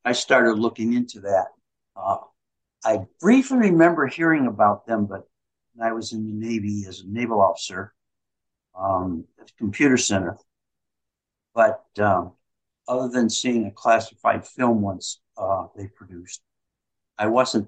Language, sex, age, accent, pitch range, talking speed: English, male, 60-79, American, 100-120 Hz, 145 wpm